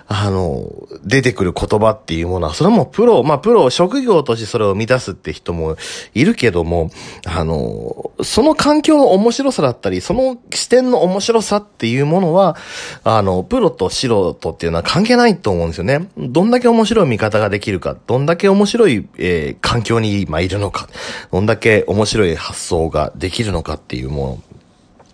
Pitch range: 85-140 Hz